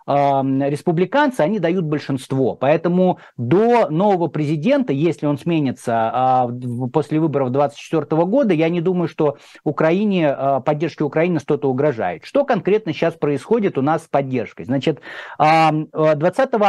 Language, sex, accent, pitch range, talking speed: Russian, male, native, 145-185 Hz, 120 wpm